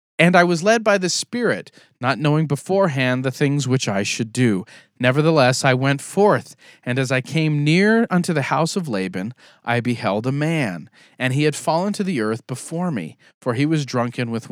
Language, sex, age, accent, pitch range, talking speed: English, male, 40-59, American, 125-175 Hz, 200 wpm